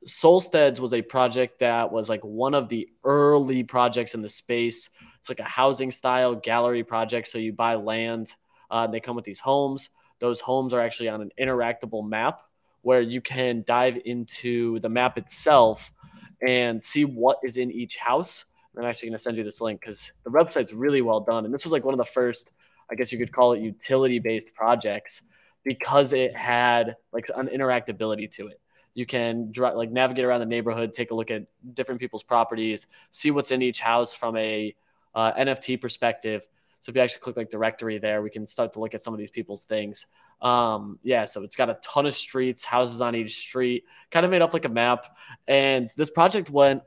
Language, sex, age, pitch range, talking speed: English, male, 20-39, 115-130 Hz, 205 wpm